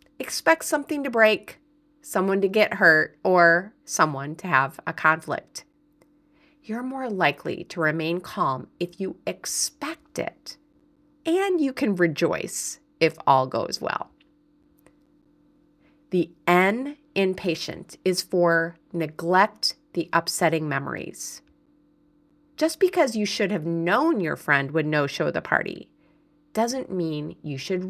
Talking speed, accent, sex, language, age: 125 wpm, American, female, English, 30-49